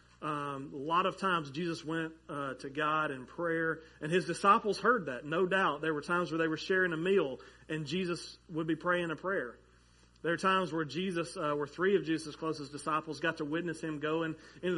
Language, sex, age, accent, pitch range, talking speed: English, male, 40-59, American, 150-190 Hz, 215 wpm